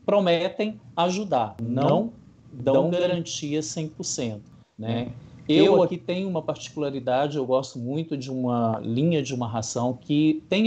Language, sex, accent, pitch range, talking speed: Portuguese, male, Brazilian, 130-175 Hz, 130 wpm